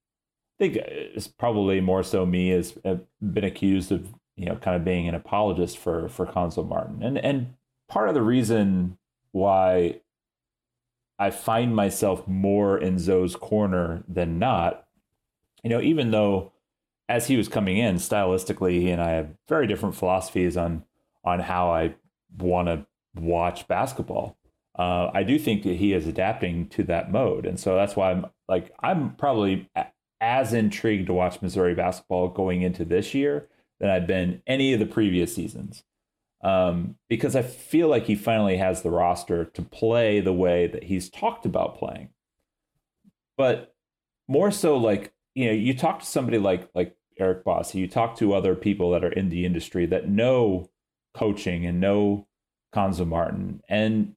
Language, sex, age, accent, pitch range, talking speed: English, male, 30-49, American, 90-110 Hz, 170 wpm